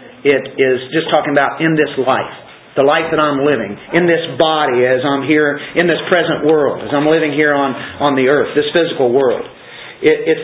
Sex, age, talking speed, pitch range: male, 40-59, 200 wpm, 145-180 Hz